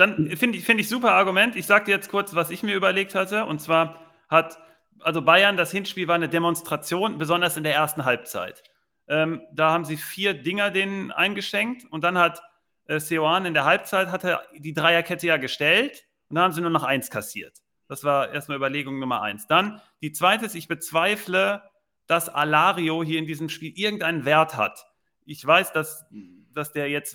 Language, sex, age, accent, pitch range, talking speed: German, male, 40-59, German, 145-185 Hz, 195 wpm